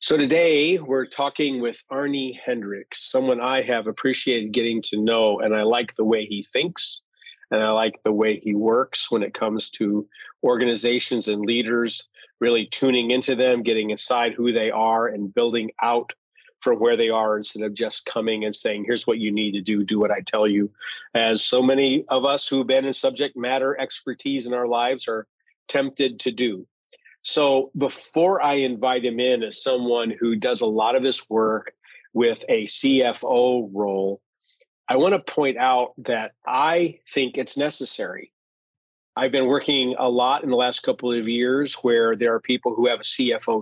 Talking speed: 185 wpm